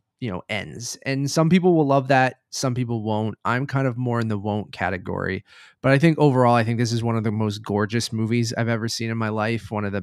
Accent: American